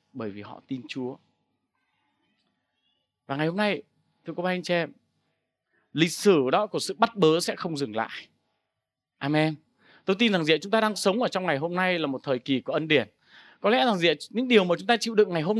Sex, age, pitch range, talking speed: male, 20-39, 155-210 Hz, 230 wpm